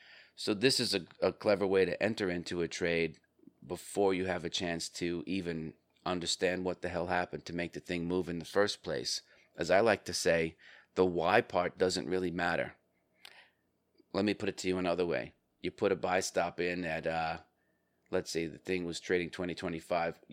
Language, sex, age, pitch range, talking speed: English, male, 30-49, 85-95 Hz, 200 wpm